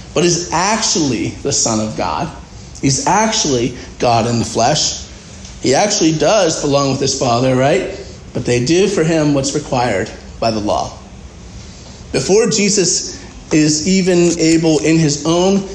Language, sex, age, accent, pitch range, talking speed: English, male, 40-59, American, 120-160 Hz, 150 wpm